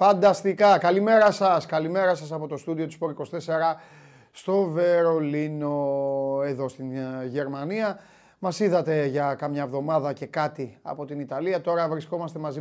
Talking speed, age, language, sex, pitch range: 140 wpm, 30-49, Greek, male, 140-180 Hz